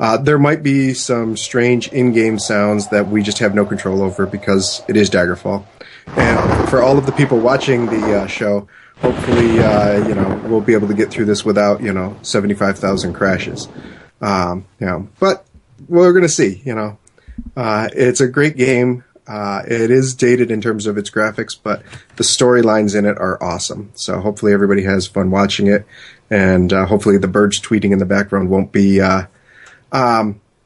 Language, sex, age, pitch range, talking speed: English, male, 30-49, 105-140 Hz, 190 wpm